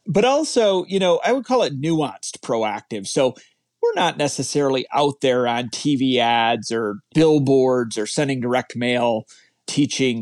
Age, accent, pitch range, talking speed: 30-49, American, 115-150 Hz, 155 wpm